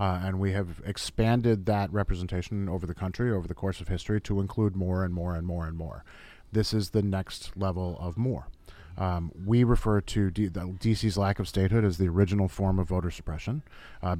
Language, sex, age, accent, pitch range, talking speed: English, male, 40-59, American, 95-120 Hz, 205 wpm